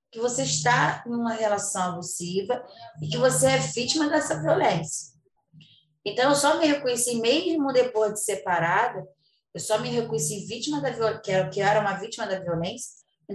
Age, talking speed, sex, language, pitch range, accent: 20-39, 165 wpm, female, Portuguese, 180-250 Hz, Brazilian